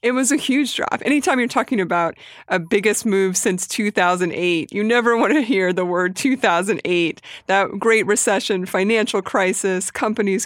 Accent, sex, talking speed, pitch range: American, female, 160 wpm, 195-235 Hz